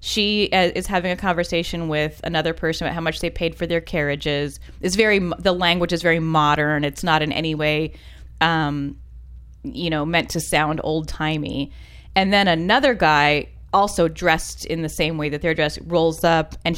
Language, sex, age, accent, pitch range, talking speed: English, female, 20-39, American, 150-185 Hz, 180 wpm